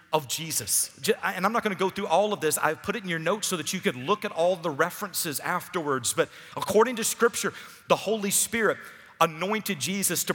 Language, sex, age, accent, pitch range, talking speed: English, male, 40-59, American, 165-215 Hz, 220 wpm